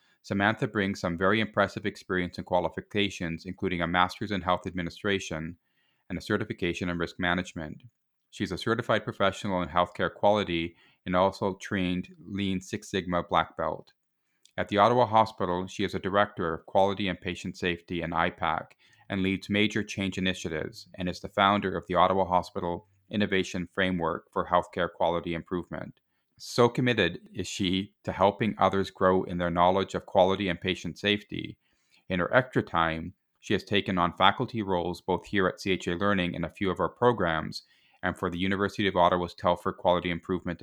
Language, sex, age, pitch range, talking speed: English, male, 30-49, 85-100 Hz, 170 wpm